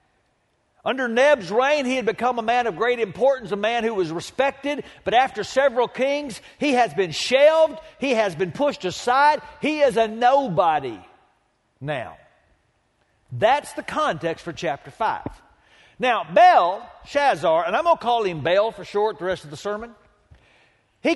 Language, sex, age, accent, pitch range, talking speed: English, male, 50-69, American, 215-300 Hz, 165 wpm